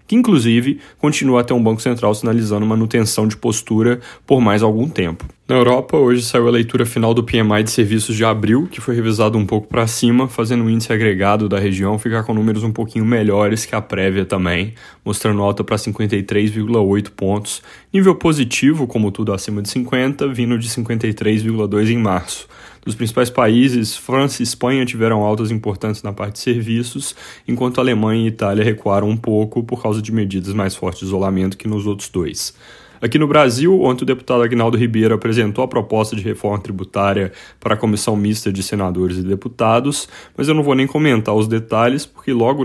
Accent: Brazilian